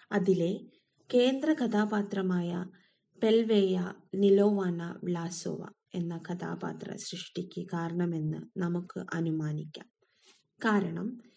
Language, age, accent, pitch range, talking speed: English, 20-39, Indian, 180-215 Hz, 80 wpm